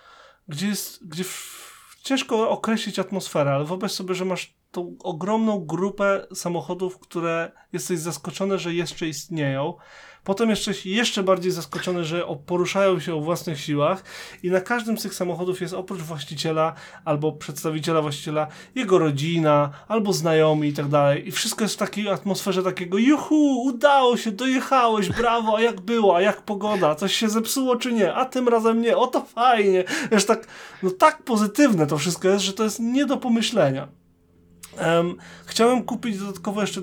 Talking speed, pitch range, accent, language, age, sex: 155 wpm, 160-205 Hz, native, Polish, 30-49, male